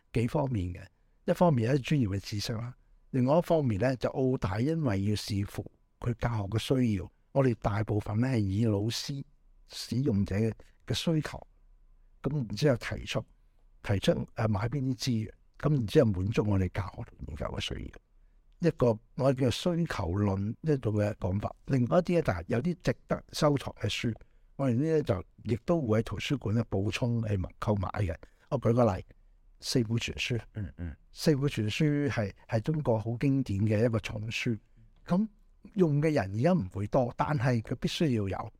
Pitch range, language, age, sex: 105-135 Hz, Chinese, 60-79, male